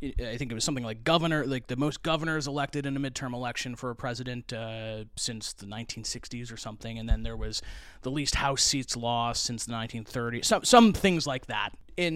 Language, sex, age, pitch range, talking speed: English, male, 30-49, 120-155 Hz, 210 wpm